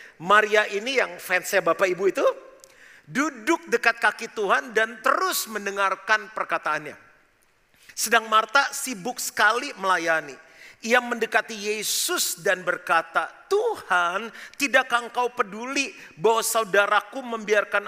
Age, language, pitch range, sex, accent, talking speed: 40-59, Indonesian, 190-270 Hz, male, native, 105 wpm